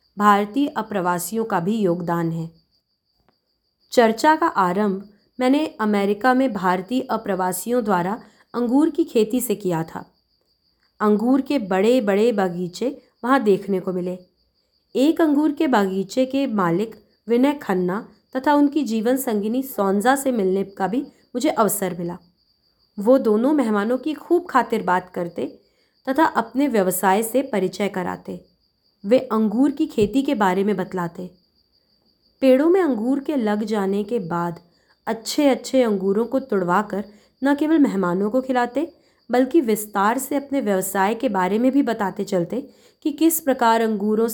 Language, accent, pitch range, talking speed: Hindi, native, 195-265 Hz, 145 wpm